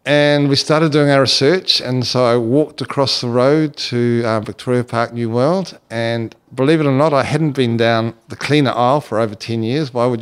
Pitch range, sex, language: 115-140 Hz, male, English